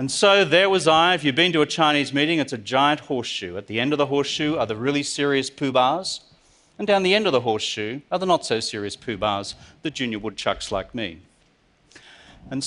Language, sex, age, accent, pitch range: Chinese, male, 40-59, Australian, 120-175 Hz